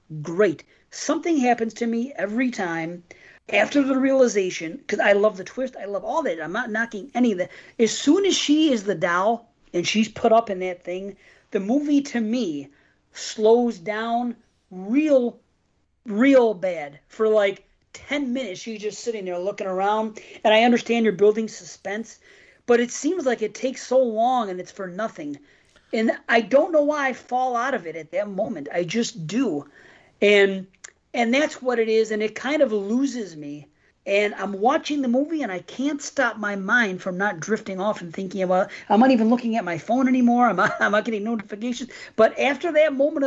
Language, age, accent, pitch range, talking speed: English, 40-59, American, 200-255 Hz, 195 wpm